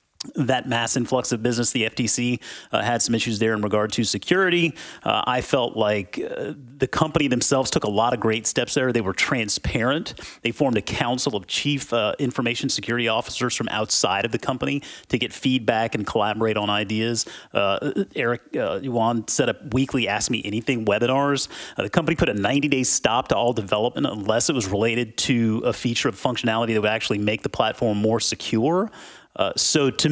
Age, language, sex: 30-49, English, male